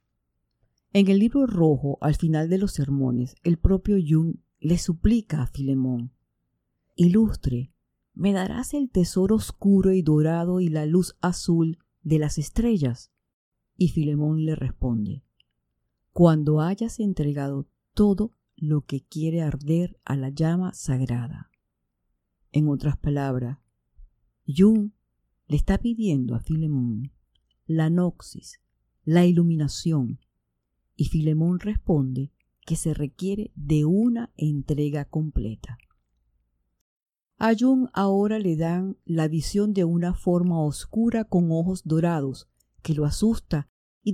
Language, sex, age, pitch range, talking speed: English, female, 50-69, 135-185 Hz, 120 wpm